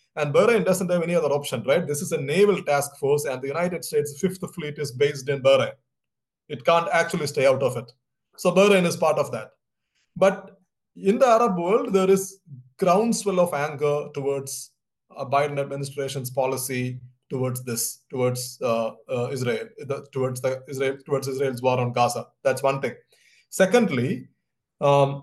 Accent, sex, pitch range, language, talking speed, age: Indian, male, 130-170 Hz, English, 170 wpm, 30-49